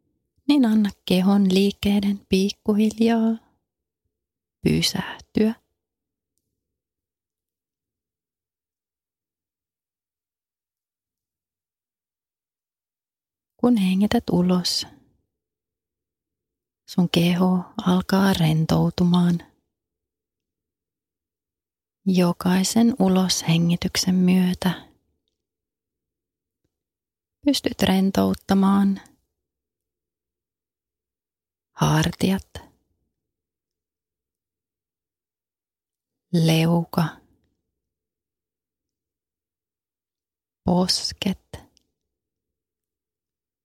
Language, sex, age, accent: Finnish, female, 30-49, native